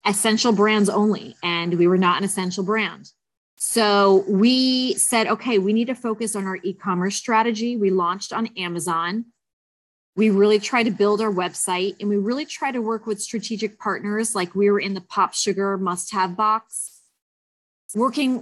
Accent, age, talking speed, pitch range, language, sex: American, 30-49, 175 wpm, 195-230 Hz, English, female